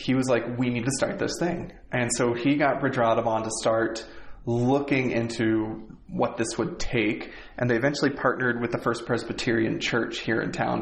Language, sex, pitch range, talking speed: English, male, 115-135 Hz, 195 wpm